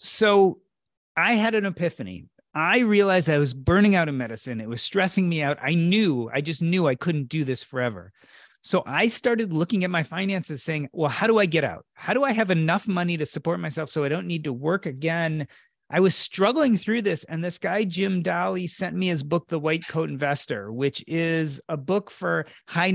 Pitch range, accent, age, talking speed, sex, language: 150-195 Hz, American, 30-49, 215 wpm, male, English